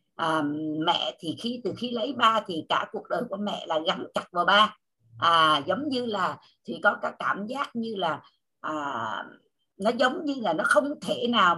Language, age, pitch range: Vietnamese, 60-79, 170-250 Hz